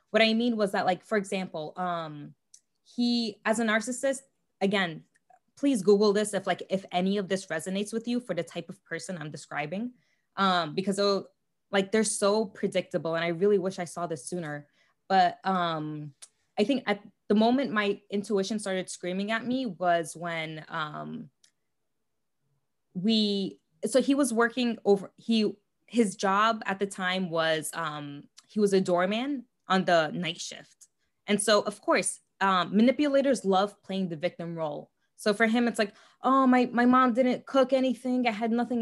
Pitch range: 185-250 Hz